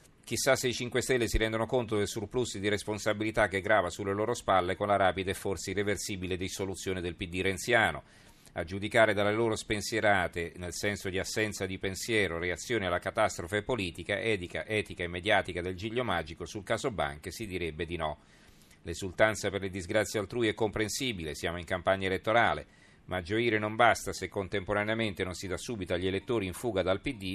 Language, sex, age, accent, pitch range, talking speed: Italian, male, 40-59, native, 90-110 Hz, 180 wpm